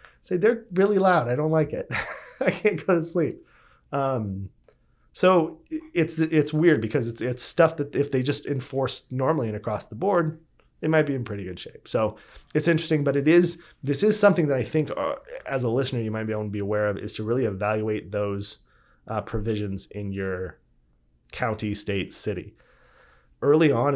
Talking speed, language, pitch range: 195 wpm, English, 105-145 Hz